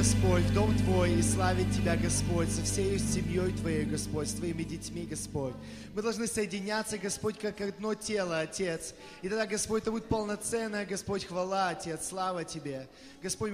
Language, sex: English, male